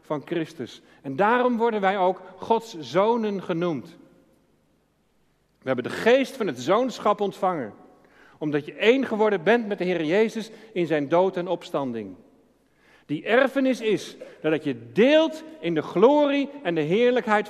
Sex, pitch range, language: male, 150-225 Hz, Dutch